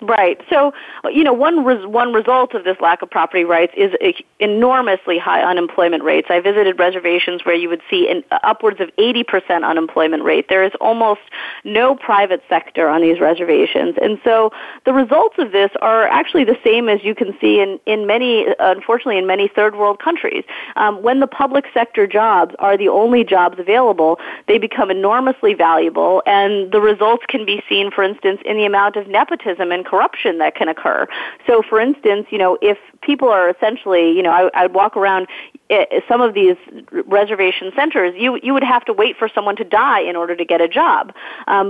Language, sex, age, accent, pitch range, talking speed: English, female, 30-49, American, 185-250 Hz, 195 wpm